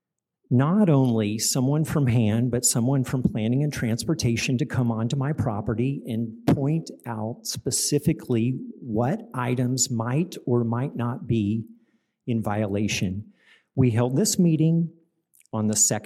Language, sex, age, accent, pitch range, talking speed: English, male, 50-69, American, 115-150 Hz, 130 wpm